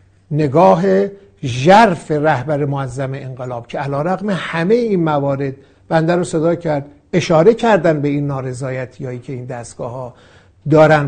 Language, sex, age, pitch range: Persian, male, 60-79, 140-195 Hz